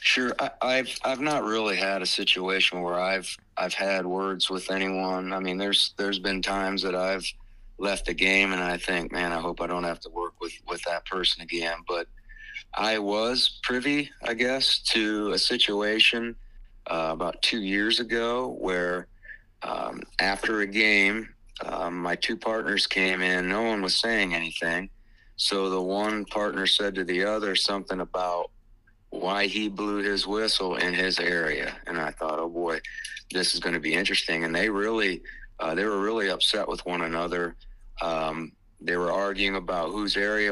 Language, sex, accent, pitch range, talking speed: English, male, American, 90-105 Hz, 180 wpm